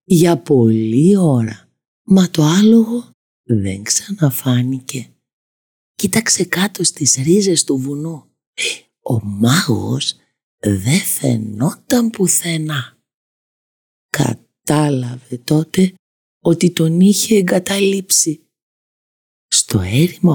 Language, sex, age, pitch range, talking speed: Greek, female, 50-69, 120-185 Hz, 80 wpm